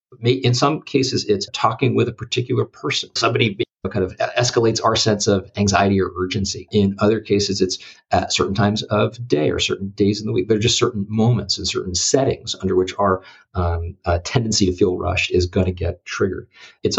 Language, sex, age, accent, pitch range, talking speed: English, male, 50-69, American, 95-110 Hz, 200 wpm